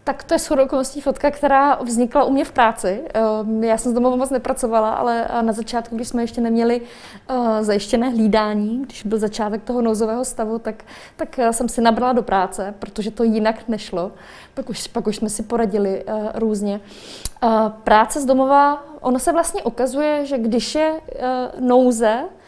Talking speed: 165 wpm